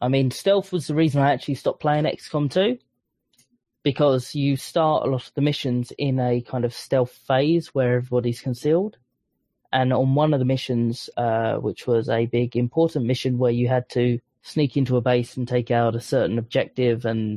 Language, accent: English, British